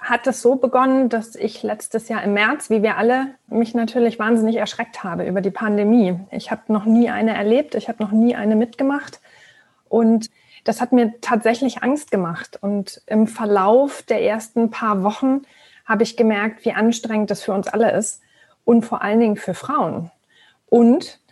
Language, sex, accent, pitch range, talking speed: German, female, German, 210-240 Hz, 180 wpm